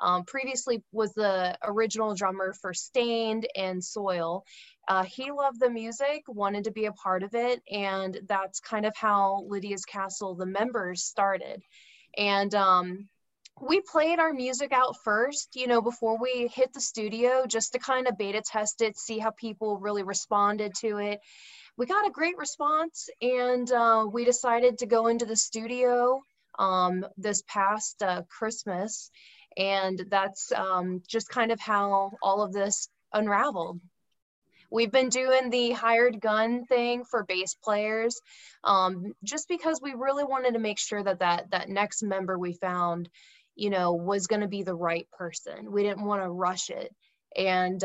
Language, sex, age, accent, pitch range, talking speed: English, female, 20-39, American, 195-240 Hz, 165 wpm